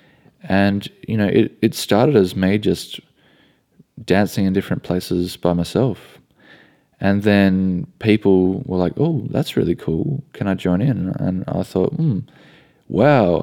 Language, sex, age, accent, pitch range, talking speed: English, male, 20-39, Australian, 90-105 Hz, 145 wpm